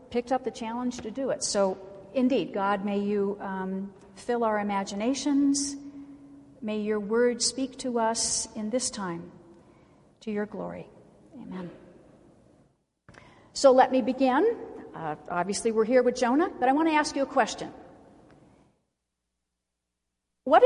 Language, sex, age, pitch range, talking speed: English, female, 50-69, 210-280 Hz, 140 wpm